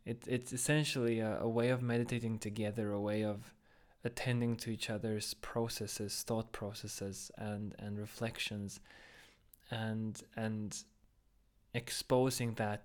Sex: male